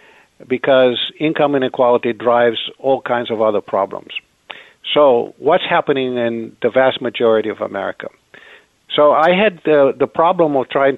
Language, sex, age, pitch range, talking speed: English, male, 50-69, 115-135 Hz, 150 wpm